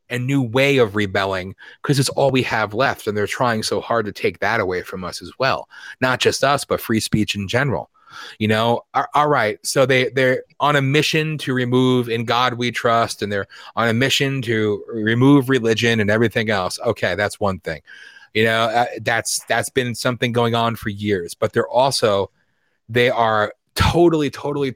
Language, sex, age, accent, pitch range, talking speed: English, male, 30-49, American, 115-145 Hz, 200 wpm